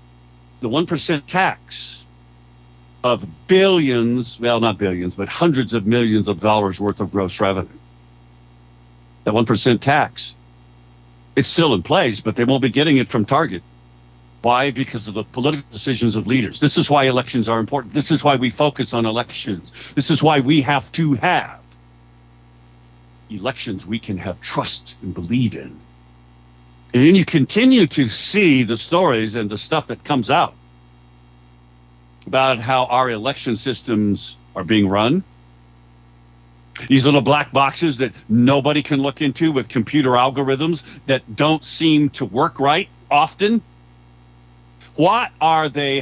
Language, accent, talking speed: English, American, 145 wpm